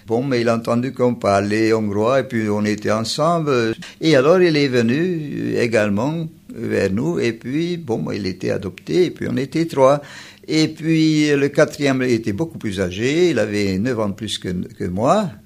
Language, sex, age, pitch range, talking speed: French, male, 60-79, 115-155 Hz, 190 wpm